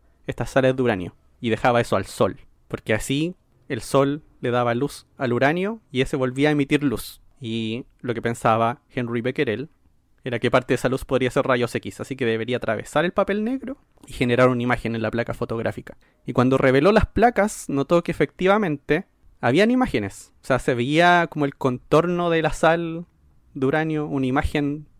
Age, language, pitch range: 20-39, Spanish, 120-155 Hz